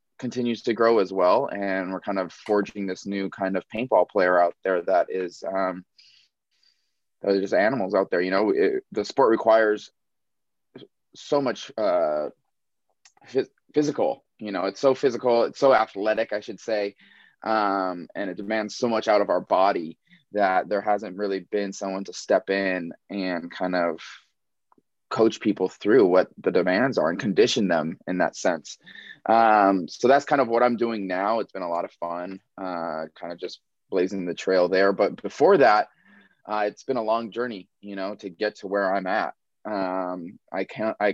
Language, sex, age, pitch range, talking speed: English, male, 20-39, 95-110 Hz, 185 wpm